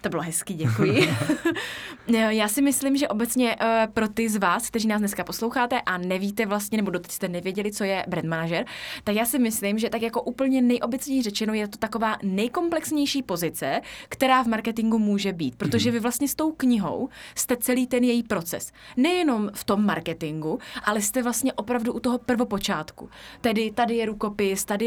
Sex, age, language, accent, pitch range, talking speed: female, 20-39, Czech, native, 200-230 Hz, 175 wpm